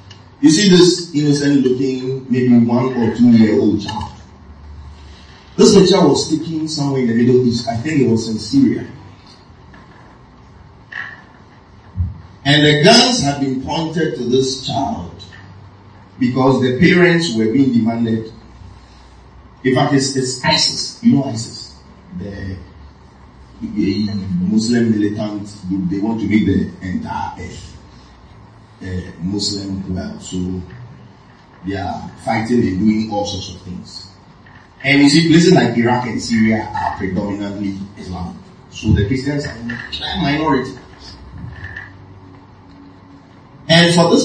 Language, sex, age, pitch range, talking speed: English, male, 40-59, 100-135 Hz, 120 wpm